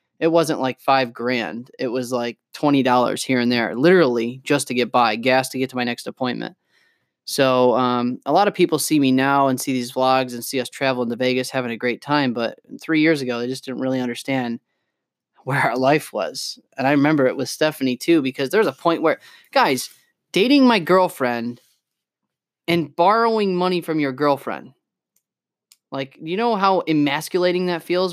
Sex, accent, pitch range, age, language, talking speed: male, American, 125-160 Hz, 20-39, English, 190 wpm